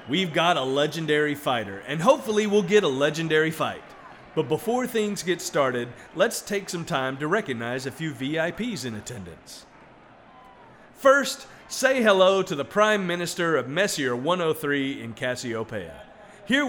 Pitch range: 135-190 Hz